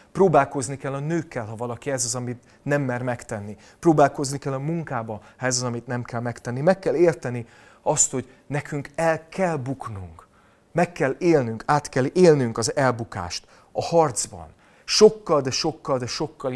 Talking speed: 170 wpm